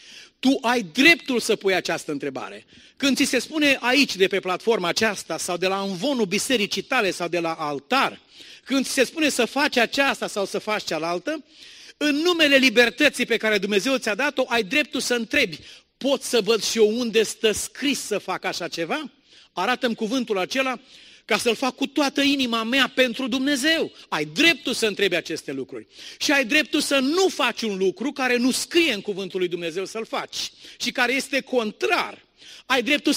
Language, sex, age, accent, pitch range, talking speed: Romanian, male, 40-59, native, 190-265 Hz, 185 wpm